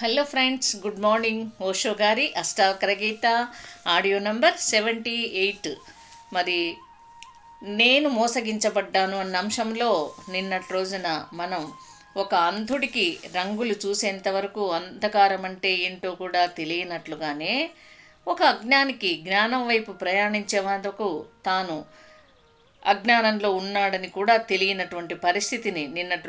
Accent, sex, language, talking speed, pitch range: native, female, Telugu, 95 wpm, 180-235 Hz